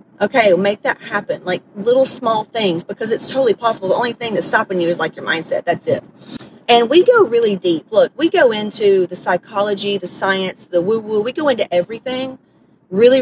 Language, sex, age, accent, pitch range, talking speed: English, female, 30-49, American, 190-235 Hz, 205 wpm